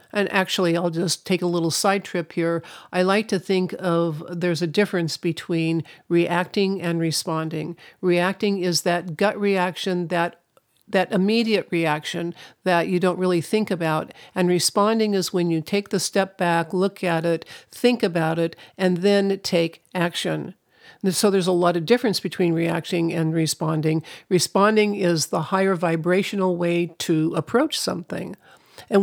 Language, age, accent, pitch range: English, 50-69, American, 165-195 Hz